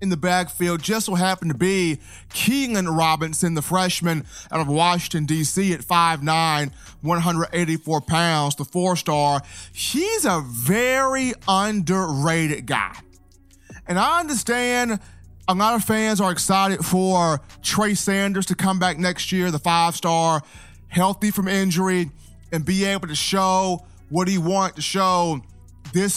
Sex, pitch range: male, 160-210 Hz